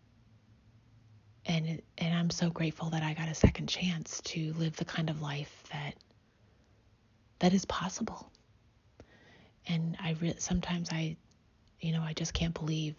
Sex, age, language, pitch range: female, 30-49, English, 115-165 Hz